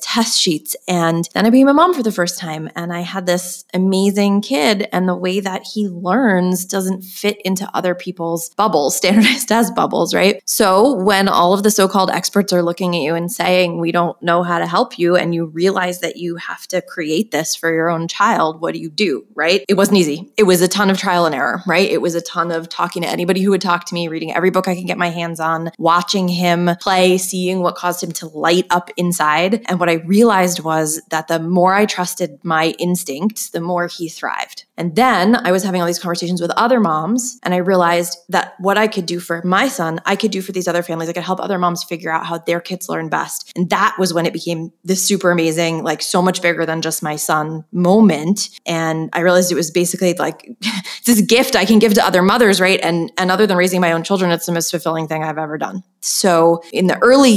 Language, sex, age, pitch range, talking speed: English, female, 20-39, 170-190 Hz, 240 wpm